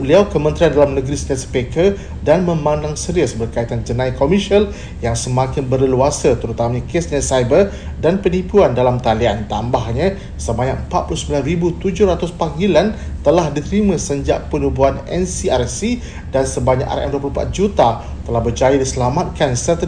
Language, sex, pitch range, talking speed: Malay, male, 120-150 Hz, 120 wpm